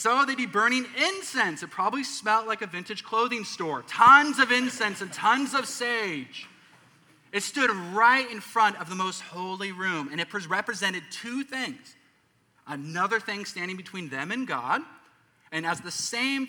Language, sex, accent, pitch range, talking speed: English, male, American, 135-195 Hz, 165 wpm